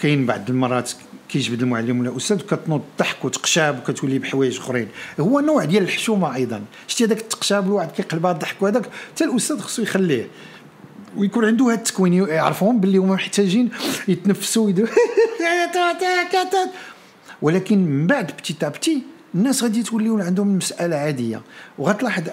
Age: 50-69